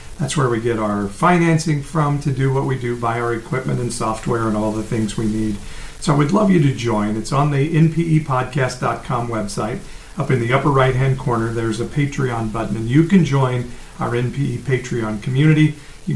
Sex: male